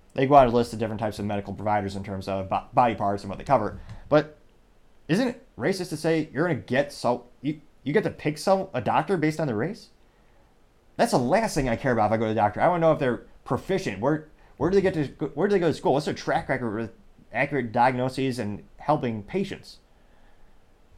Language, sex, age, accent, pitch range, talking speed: English, male, 30-49, American, 115-160 Hz, 240 wpm